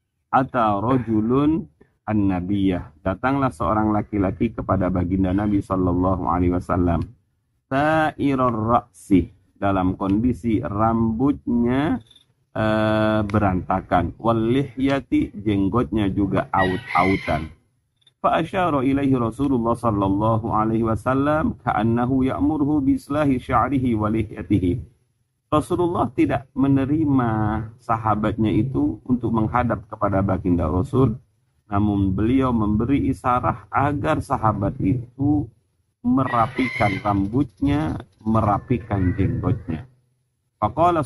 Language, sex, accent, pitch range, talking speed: Indonesian, male, native, 105-130 Hz, 75 wpm